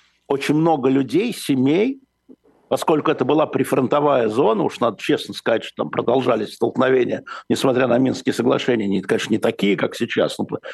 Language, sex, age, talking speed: Russian, male, 60-79, 150 wpm